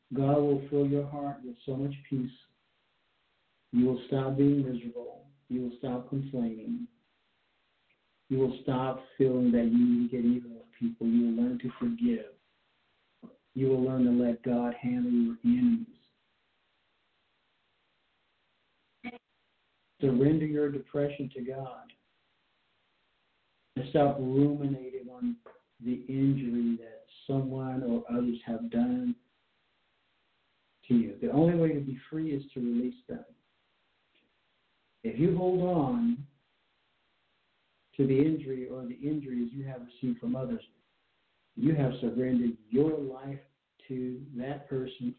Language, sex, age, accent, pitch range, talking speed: English, male, 50-69, American, 125-150 Hz, 125 wpm